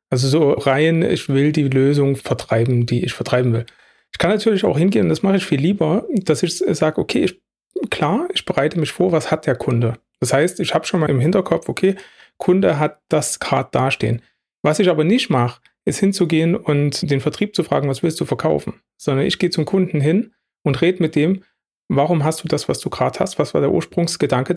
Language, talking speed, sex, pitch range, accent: German, 215 wpm, male, 145-185 Hz, German